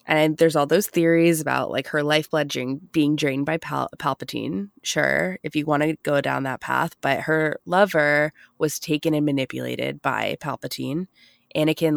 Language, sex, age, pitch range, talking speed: English, female, 20-39, 140-160 Hz, 170 wpm